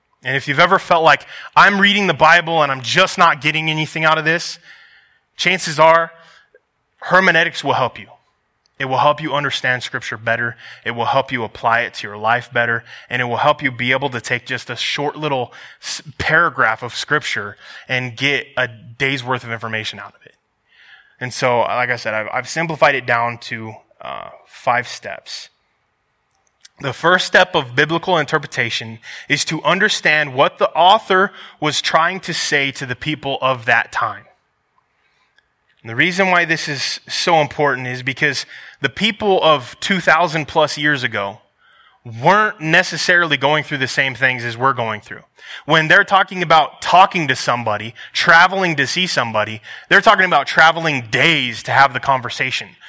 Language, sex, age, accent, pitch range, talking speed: English, male, 20-39, American, 125-165 Hz, 175 wpm